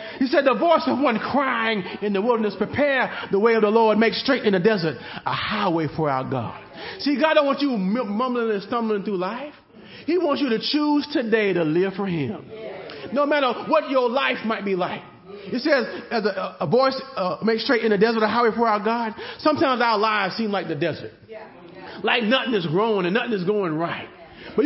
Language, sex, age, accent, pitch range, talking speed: English, male, 30-49, American, 205-275 Hz, 215 wpm